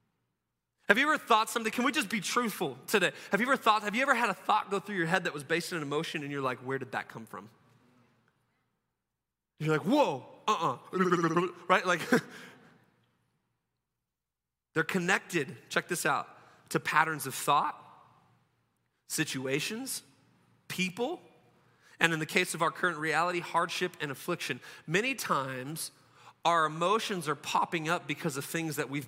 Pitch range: 160-225 Hz